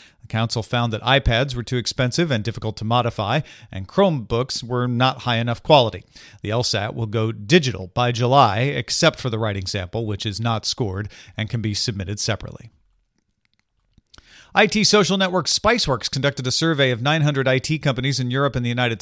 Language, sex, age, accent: English, male, 40-59, American